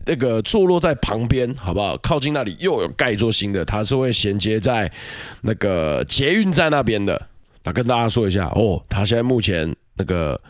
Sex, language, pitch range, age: male, Chinese, 100-140 Hz, 20-39